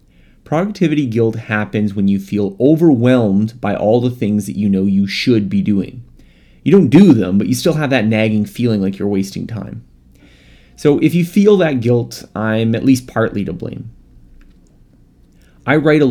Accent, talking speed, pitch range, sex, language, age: American, 180 wpm, 95-125 Hz, male, English, 30-49